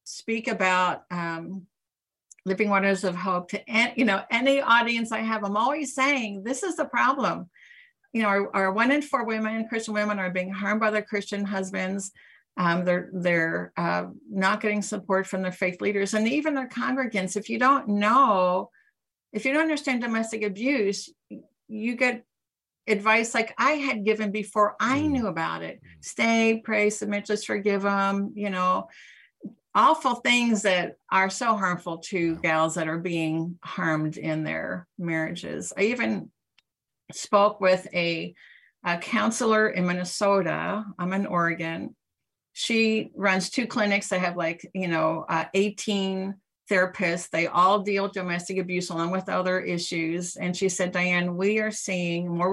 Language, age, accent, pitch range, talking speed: English, 50-69, American, 180-225 Hz, 160 wpm